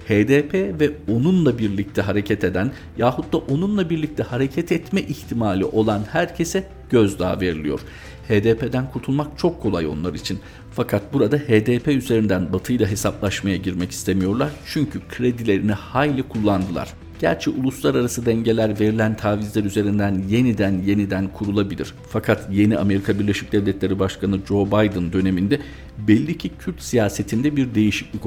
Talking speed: 125 wpm